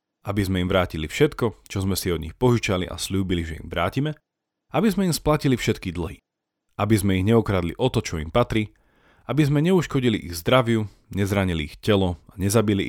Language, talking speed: Slovak, 190 wpm